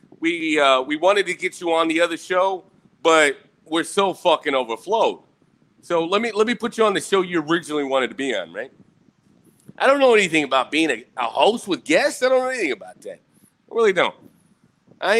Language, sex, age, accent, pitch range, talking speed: English, male, 40-59, American, 140-205 Hz, 215 wpm